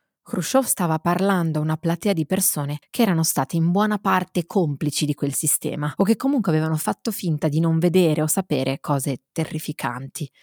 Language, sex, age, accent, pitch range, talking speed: Italian, female, 20-39, native, 155-195 Hz, 180 wpm